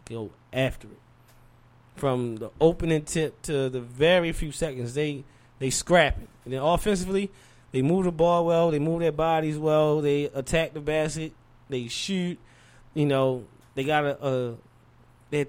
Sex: male